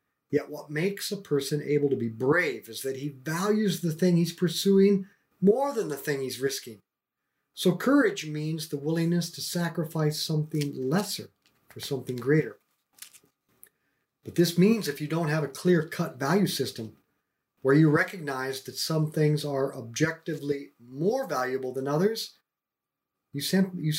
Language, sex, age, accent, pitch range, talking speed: English, male, 50-69, American, 135-180 Hz, 150 wpm